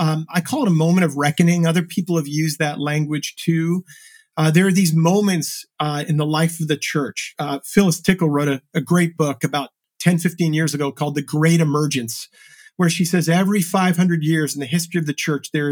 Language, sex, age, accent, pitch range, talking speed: English, male, 40-59, American, 155-180 Hz, 220 wpm